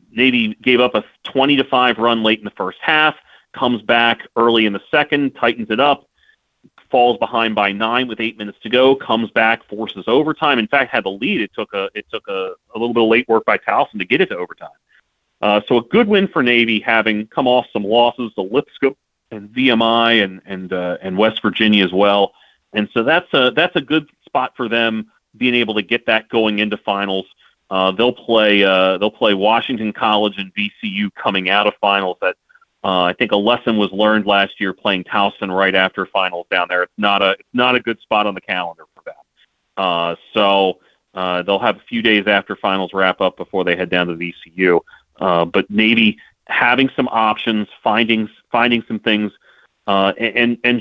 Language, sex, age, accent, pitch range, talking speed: English, male, 30-49, American, 100-120 Hz, 205 wpm